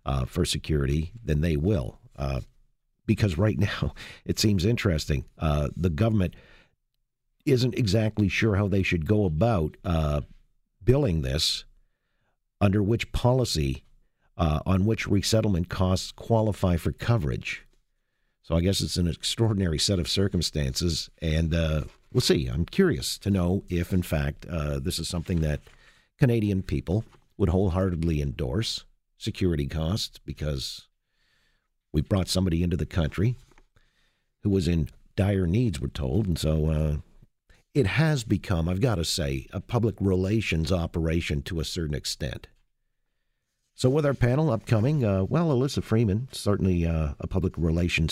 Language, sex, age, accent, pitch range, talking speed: English, male, 50-69, American, 85-115 Hz, 145 wpm